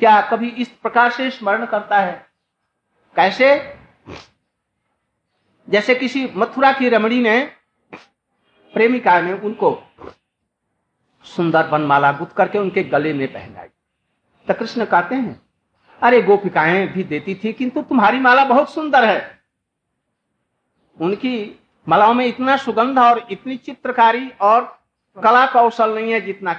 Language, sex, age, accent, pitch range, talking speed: Hindi, male, 60-79, native, 185-250 Hz, 125 wpm